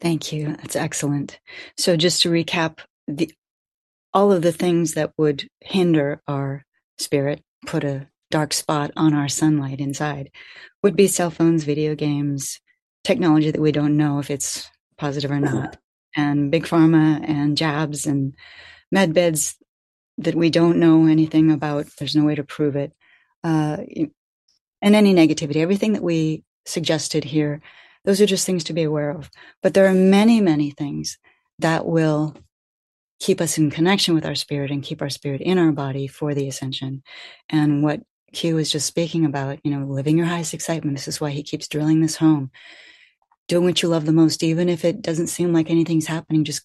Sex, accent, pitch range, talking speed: female, American, 145-170 Hz, 180 wpm